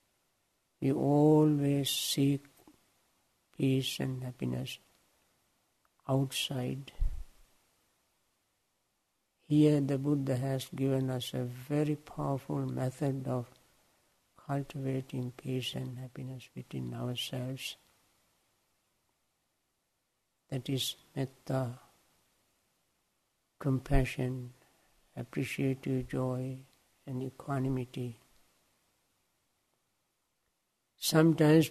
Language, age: English, 60-79